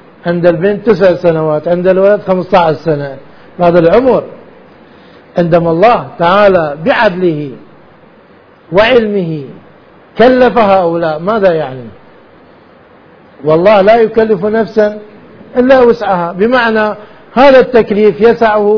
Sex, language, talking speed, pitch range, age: male, Arabic, 95 wpm, 175-225 Hz, 50-69